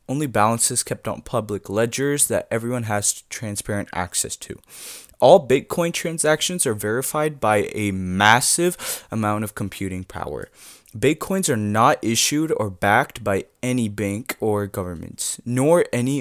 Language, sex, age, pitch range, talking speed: English, male, 20-39, 105-140 Hz, 135 wpm